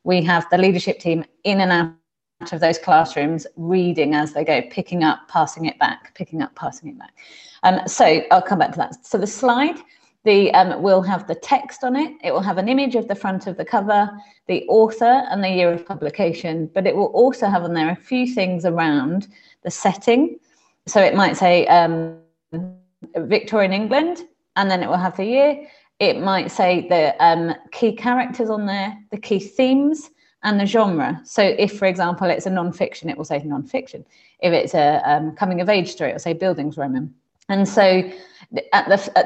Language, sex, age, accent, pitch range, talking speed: English, female, 30-49, British, 165-205 Hz, 195 wpm